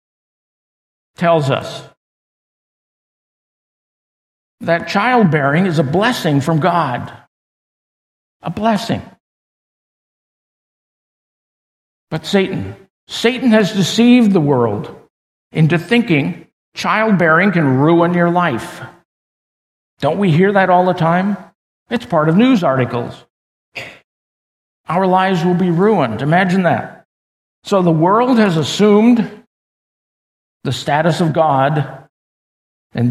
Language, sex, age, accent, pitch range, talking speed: English, male, 50-69, American, 160-200 Hz, 100 wpm